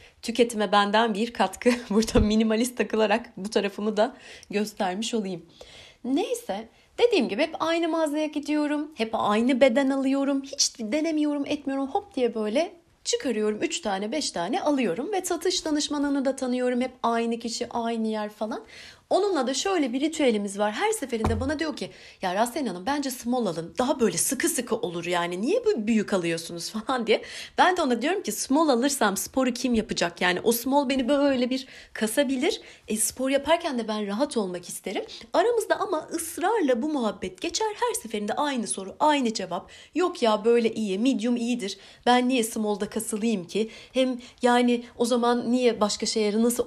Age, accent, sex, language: 30-49, native, female, Turkish